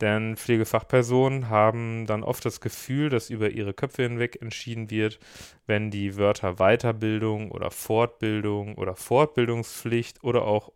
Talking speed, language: 135 wpm, German